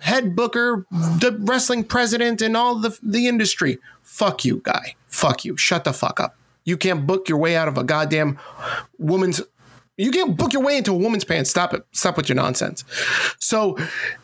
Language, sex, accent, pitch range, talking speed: English, male, American, 140-240 Hz, 190 wpm